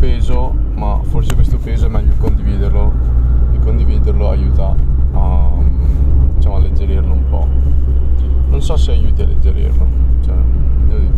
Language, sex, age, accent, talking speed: Italian, male, 20-39, native, 125 wpm